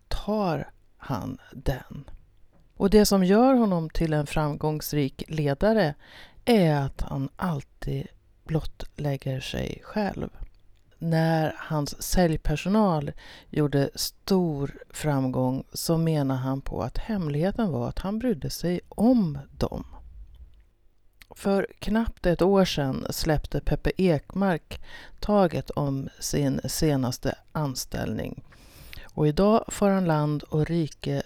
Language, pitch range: Swedish, 135-190 Hz